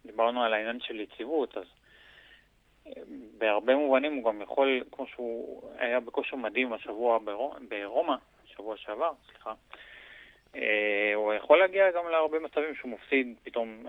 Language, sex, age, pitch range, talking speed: Hebrew, male, 20-39, 110-130 Hz, 130 wpm